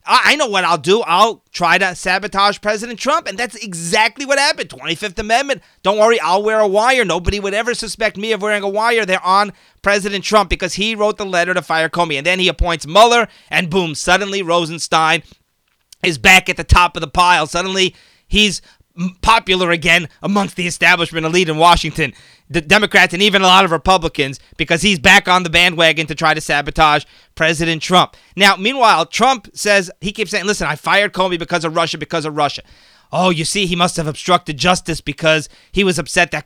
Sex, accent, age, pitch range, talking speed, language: male, American, 30-49, 170-215 Hz, 200 wpm, English